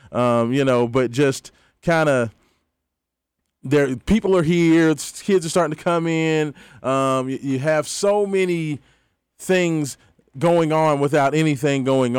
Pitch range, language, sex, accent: 120-145 Hz, English, male, American